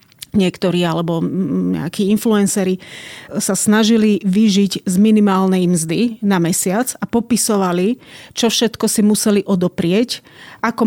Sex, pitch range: female, 185-205 Hz